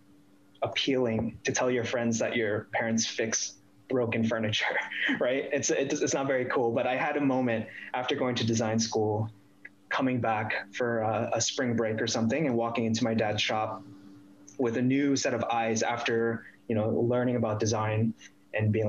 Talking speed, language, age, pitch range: 180 wpm, English, 20-39, 105-125 Hz